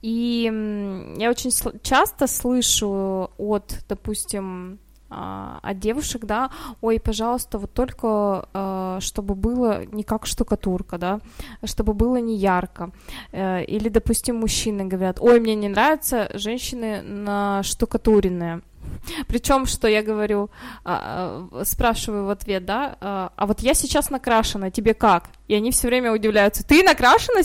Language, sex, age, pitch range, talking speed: Russian, female, 20-39, 200-255 Hz, 125 wpm